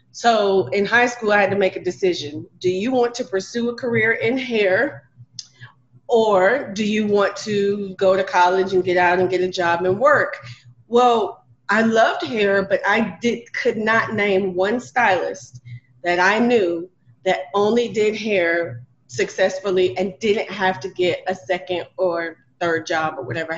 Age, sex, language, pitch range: 30-49, female, English, 175-215 Hz